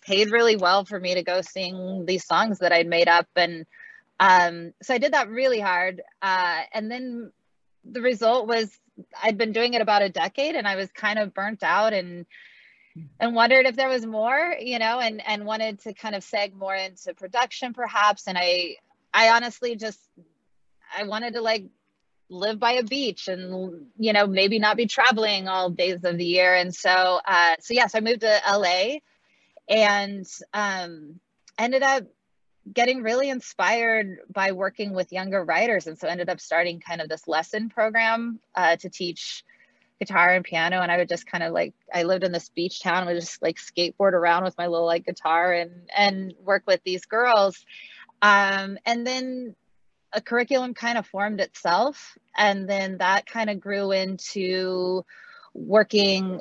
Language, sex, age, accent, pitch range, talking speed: English, female, 20-39, American, 180-230 Hz, 185 wpm